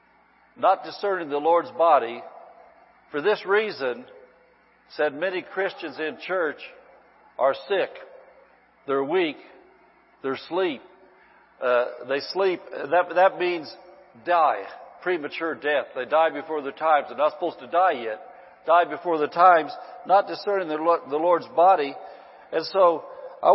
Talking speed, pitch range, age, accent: 135 wpm, 150-195 Hz, 60-79, American